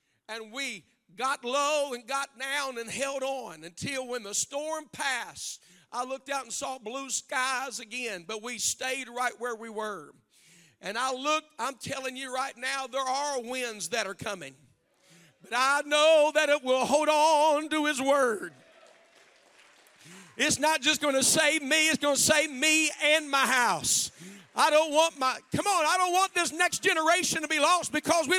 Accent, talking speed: American, 185 wpm